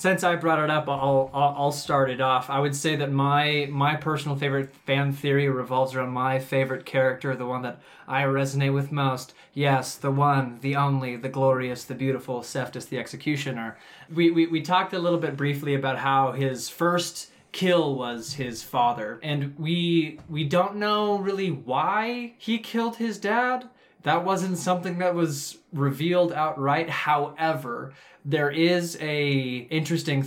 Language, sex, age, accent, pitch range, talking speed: English, male, 20-39, American, 130-160 Hz, 165 wpm